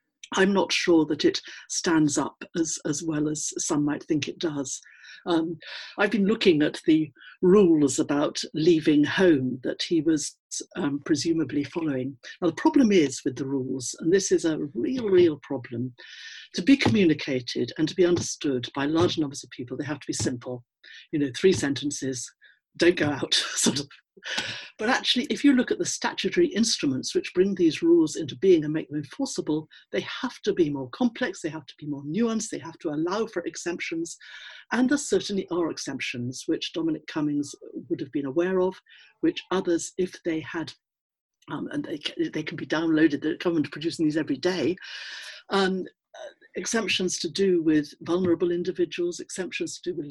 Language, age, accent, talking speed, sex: English, 60-79, British, 180 wpm, female